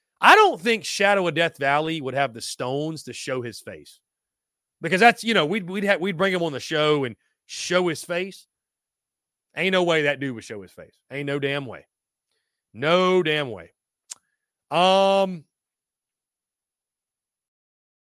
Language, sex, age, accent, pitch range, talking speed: English, male, 30-49, American, 130-185 Hz, 160 wpm